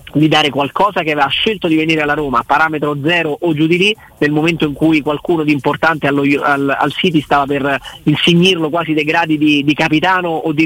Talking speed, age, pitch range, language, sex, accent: 215 wpm, 30-49, 140-160 Hz, Italian, male, native